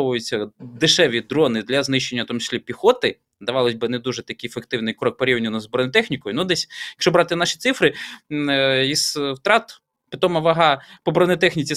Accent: native